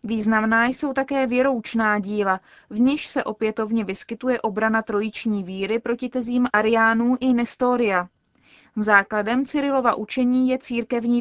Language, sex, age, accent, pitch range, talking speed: Czech, female, 20-39, native, 210-250 Hz, 125 wpm